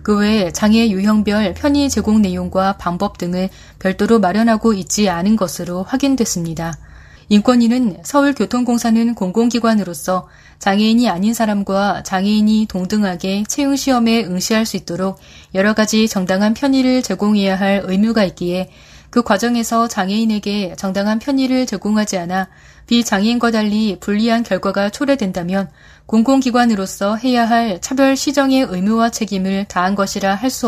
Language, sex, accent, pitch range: Korean, female, native, 190-235 Hz